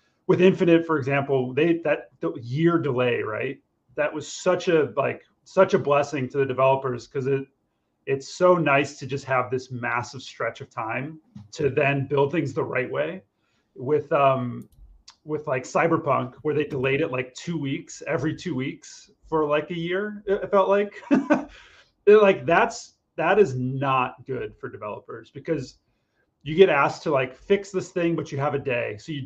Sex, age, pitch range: male, 30-49, 130-165 Hz